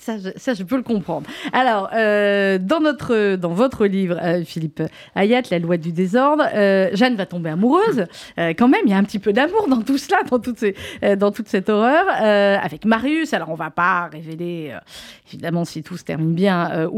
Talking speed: 225 wpm